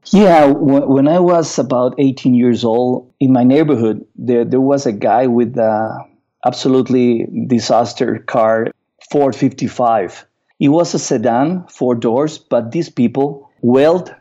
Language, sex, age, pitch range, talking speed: English, male, 50-69, 115-140 Hz, 135 wpm